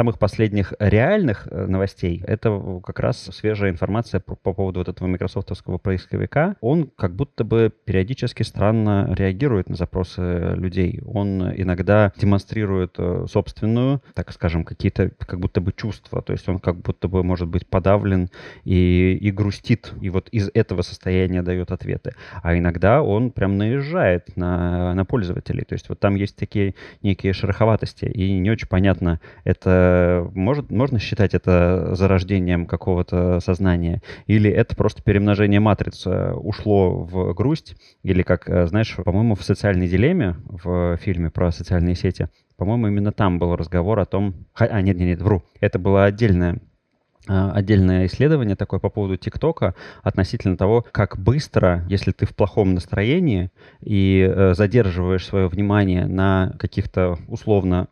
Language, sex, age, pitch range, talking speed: Russian, male, 20-39, 90-110 Hz, 140 wpm